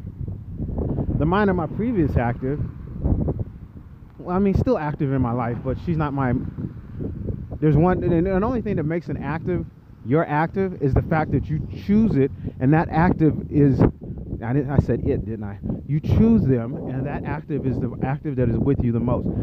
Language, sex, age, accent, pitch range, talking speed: English, male, 30-49, American, 115-155 Hz, 195 wpm